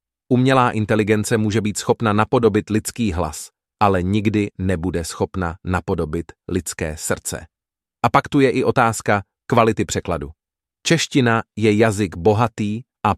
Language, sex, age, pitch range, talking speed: English, male, 30-49, 95-120 Hz, 125 wpm